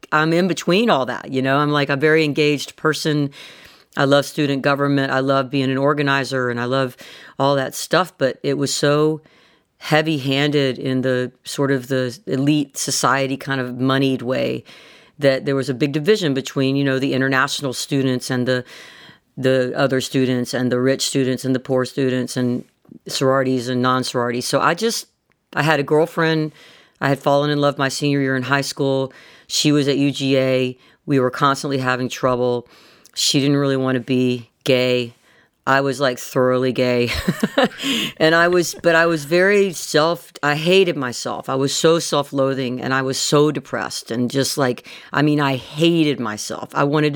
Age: 40-59